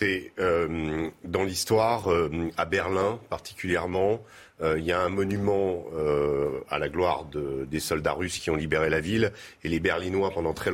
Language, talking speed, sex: French, 160 wpm, male